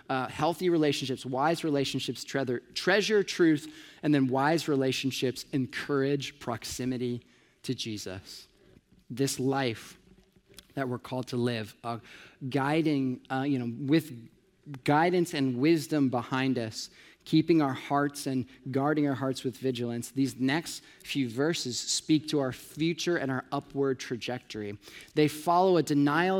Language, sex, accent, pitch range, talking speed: English, male, American, 130-160 Hz, 130 wpm